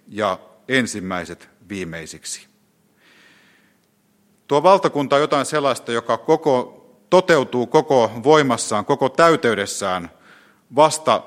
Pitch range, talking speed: 105-145 Hz, 80 wpm